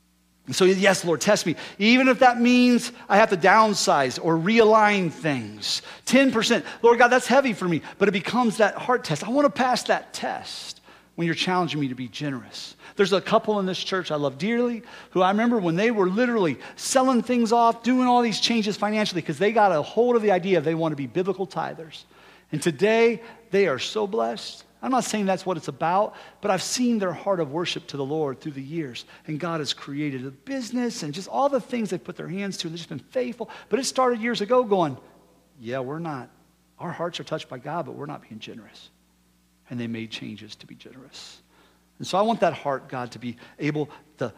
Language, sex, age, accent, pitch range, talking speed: English, male, 40-59, American, 150-220 Hz, 225 wpm